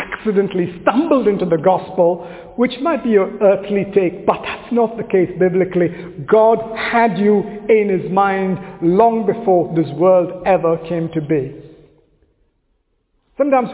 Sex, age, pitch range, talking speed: male, 50-69, 175-230 Hz, 135 wpm